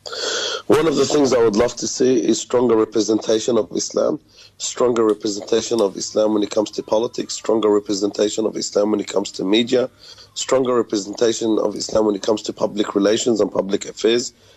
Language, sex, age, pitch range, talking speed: English, male, 30-49, 110-130 Hz, 185 wpm